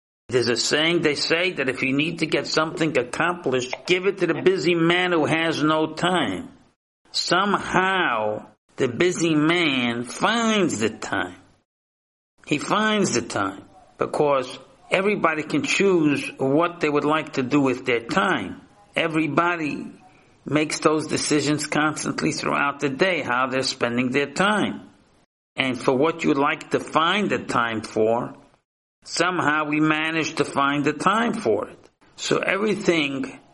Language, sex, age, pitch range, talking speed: English, male, 50-69, 135-165 Hz, 145 wpm